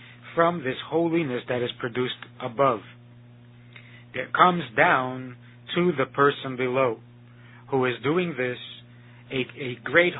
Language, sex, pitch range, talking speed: English, male, 120-140 Hz, 125 wpm